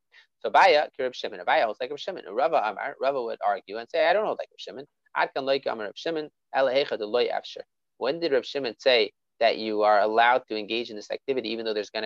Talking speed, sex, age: 150 wpm, male, 30-49